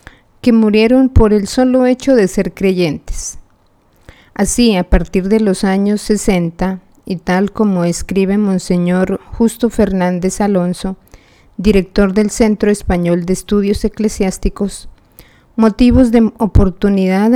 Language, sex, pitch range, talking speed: Spanish, female, 175-215 Hz, 120 wpm